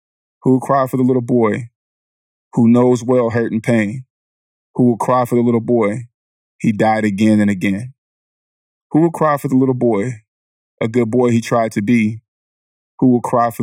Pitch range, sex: 105-120 Hz, male